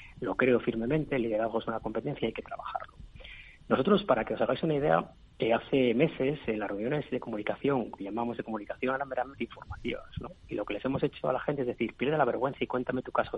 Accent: Spanish